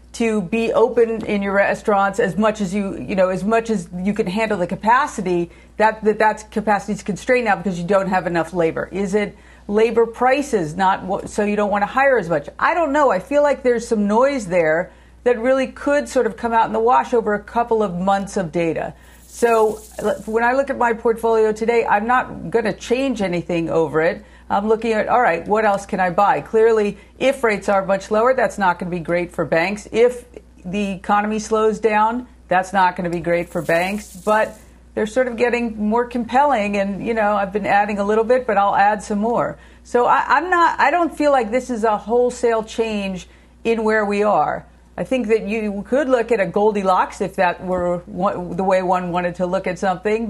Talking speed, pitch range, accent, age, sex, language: 220 wpm, 195-235 Hz, American, 50-69, female, English